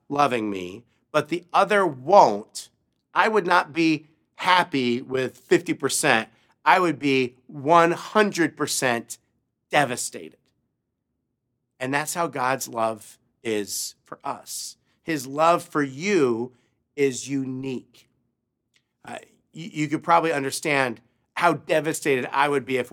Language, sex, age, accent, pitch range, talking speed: English, male, 50-69, American, 120-160 Hz, 115 wpm